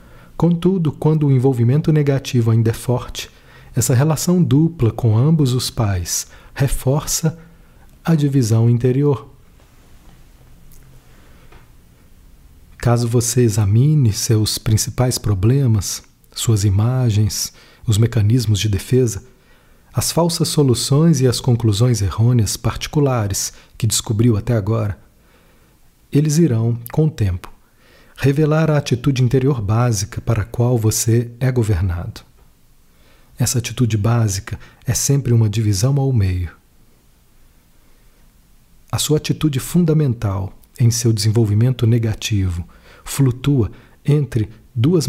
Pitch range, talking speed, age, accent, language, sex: 105-135 Hz, 105 wpm, 40-59, Brazilian, Portuguese, male